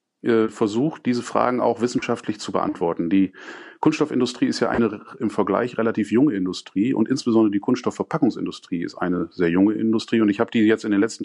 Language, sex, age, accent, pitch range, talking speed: German, male, 40-59, German, 105-130 Hz, 180 wpm